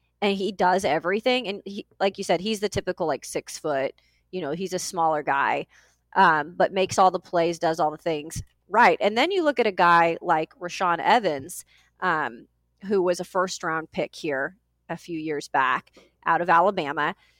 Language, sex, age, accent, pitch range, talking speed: English, female, 30-49, American, 170-220 Hz, 195 wpm